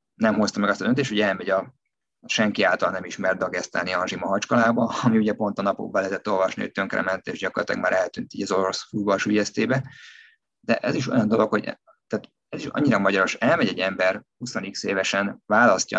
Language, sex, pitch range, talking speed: Hungarian, male, 100-125 Hz, 190 wpm